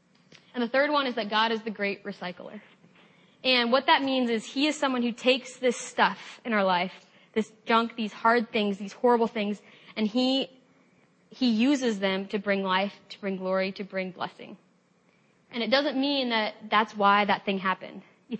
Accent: American